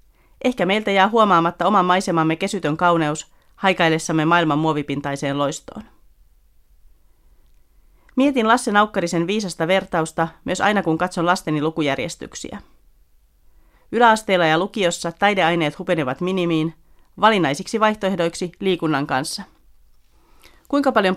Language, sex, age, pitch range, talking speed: Finnish, female, 40-59, 155-195 Hz, 100 wpm